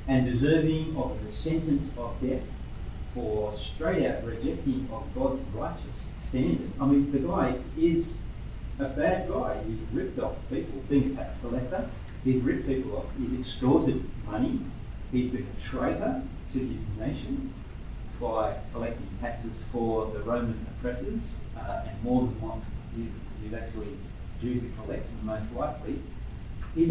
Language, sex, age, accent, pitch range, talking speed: English, male, 40-59, Australian, 110-135 Hz, 145 wpm